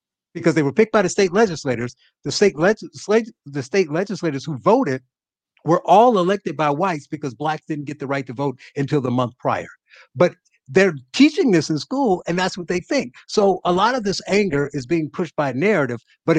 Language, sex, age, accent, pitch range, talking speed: English, male, 50-69, American, 135-170 Hz, 200 wpm